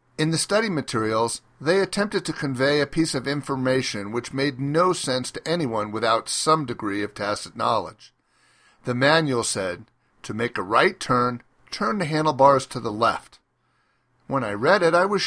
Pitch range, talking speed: 130-170 Hz, 175 wpm